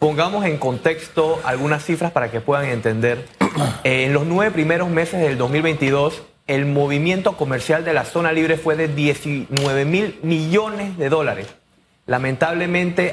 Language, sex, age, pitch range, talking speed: Spanish, male, 30-49, 135-170 Hz, 145 wpm